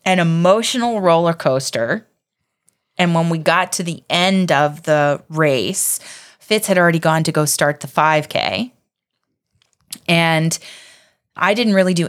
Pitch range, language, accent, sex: 150-180 Hz, English, American, female